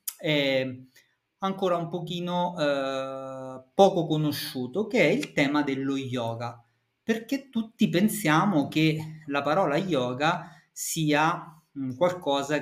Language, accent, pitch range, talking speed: Italian, native, 130-175 Hz, 110 wpm